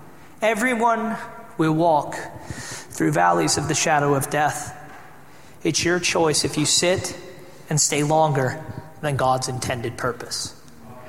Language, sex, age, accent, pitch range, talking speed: English, male, 30-49, American, 165-210 Hz, 125 wpm